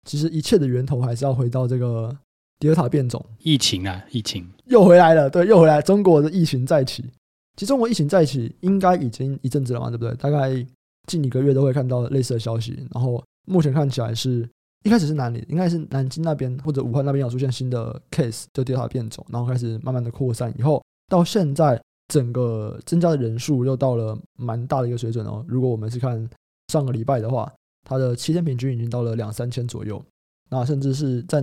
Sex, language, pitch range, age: male, Chinese, 120-150 Hz, 20-39